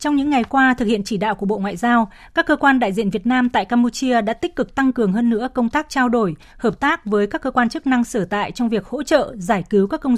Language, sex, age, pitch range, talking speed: Vietnamese, female, 20-39, 215-260 Hz, 295 wpm